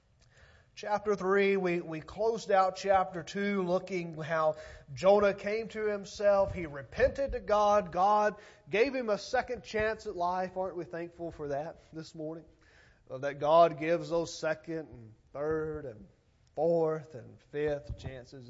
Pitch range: 130-185 Hz